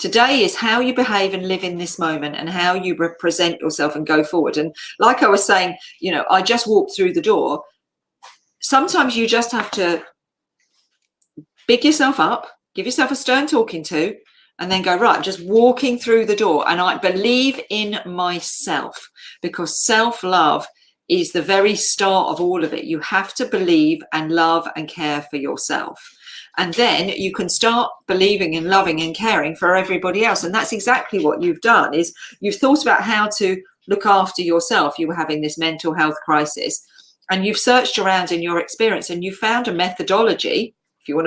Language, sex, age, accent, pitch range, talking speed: English, female, 40-59, British, 175-250 Hz, 190 wpm